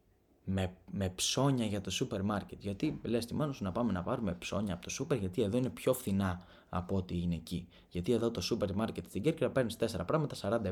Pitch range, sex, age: 95-135 Hz, male, 20-39